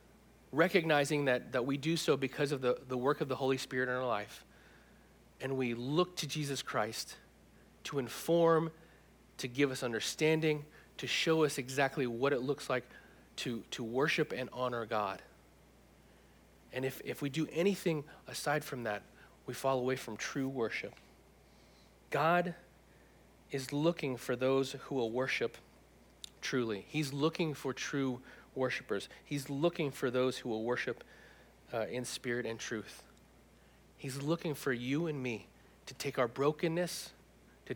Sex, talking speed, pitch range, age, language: male, 155 wpm, 125-150 Hz, 40-59, English